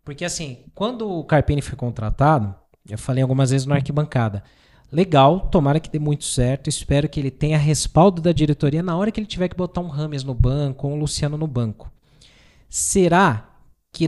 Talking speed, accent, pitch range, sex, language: 190 wpm, Brazilian, 125-160 Hz, male, Portuguese